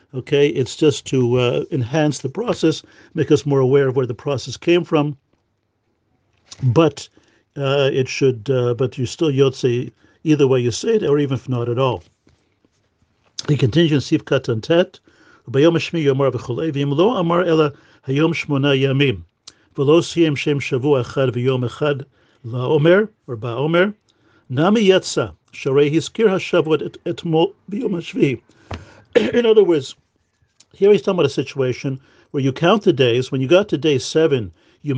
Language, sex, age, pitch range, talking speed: English, male, 50-69, 130-160 Hz, 110 wpm